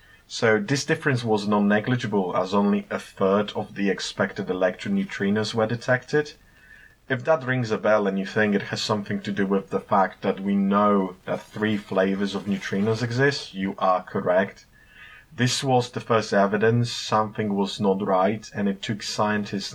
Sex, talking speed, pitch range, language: male, 175 wpm, 100-125 Hz, English